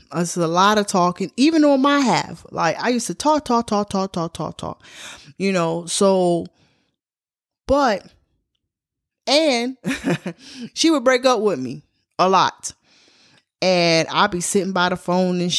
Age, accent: 20-39, American